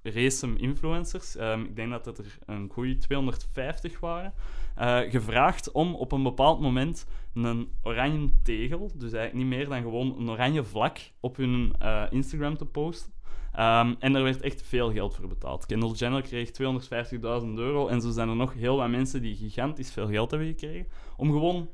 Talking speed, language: 185 wpm, Dutch